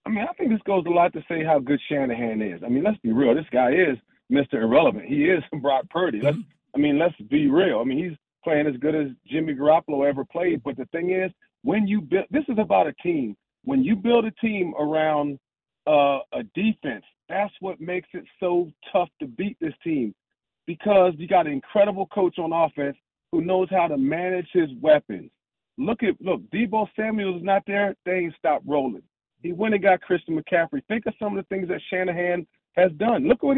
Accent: American